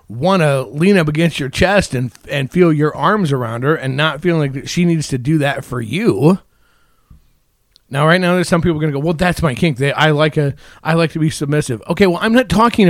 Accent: American